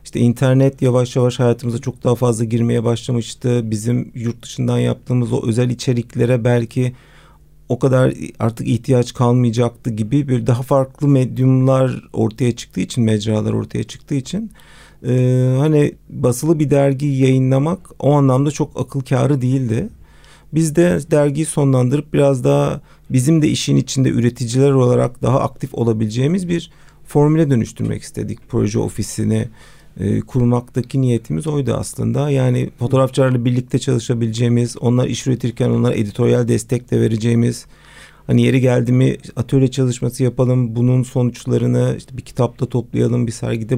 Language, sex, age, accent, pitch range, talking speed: Turkish, male, 40-59, native, 120-140 Hz, 135 wpm